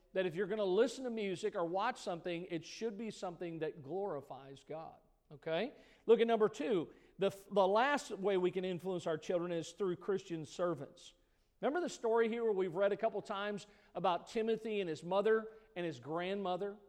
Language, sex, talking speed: English, male, 190 wpm